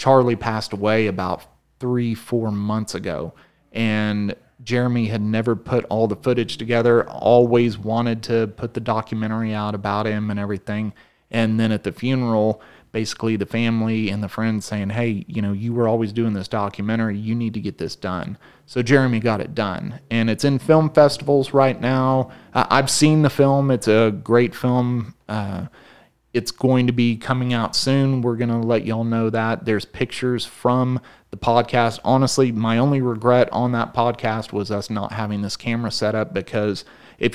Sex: male